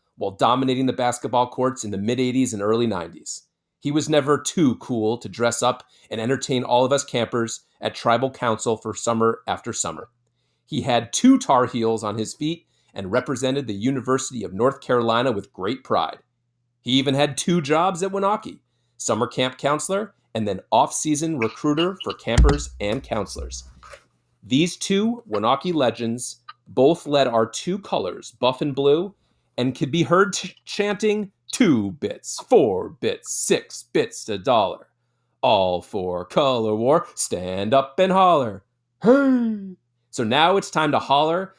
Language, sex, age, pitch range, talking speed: English, male, 30-49, 115-160 Hz, 160 wpm